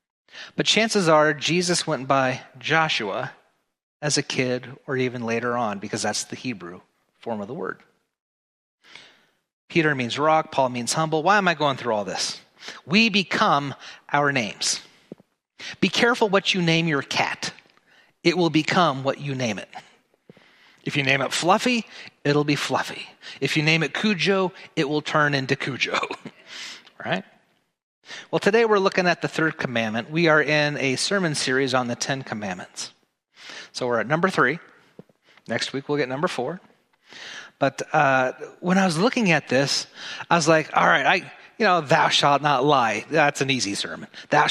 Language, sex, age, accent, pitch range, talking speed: English, male, 30-49, American, 130-175 Hz, 170 wpm